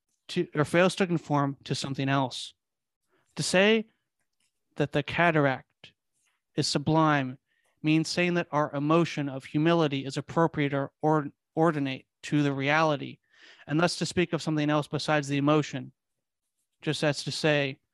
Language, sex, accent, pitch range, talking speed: English, male, American, 145-175 Hz, 140 wpm